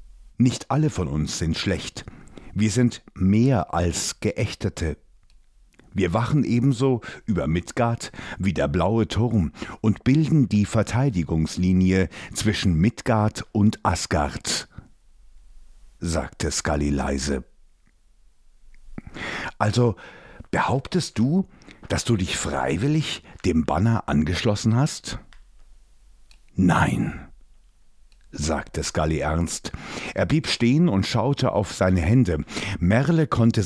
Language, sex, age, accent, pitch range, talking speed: German, male, 60-79, German, 80-115 Hz, 100 wpm